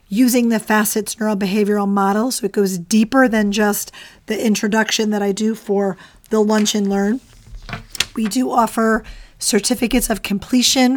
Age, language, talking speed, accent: 40-59, English, 150 wpm, American